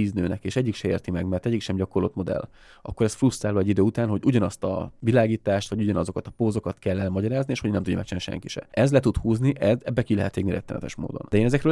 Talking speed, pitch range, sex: 245 wpm, 95-115 Hz, male